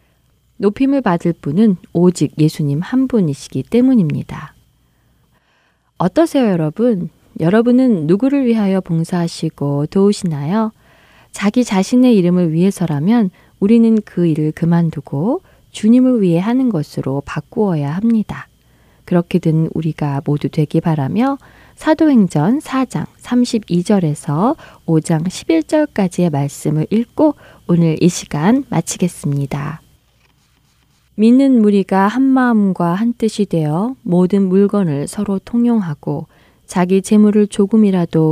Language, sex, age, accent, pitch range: Korean, female, 20-39, native, 160-220 Hz